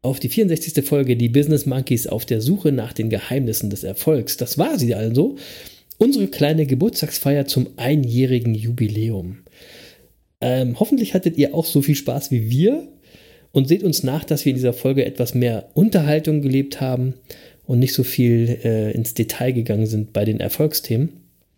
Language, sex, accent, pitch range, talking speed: German, male, German, 125-160 Hz, 170 wpm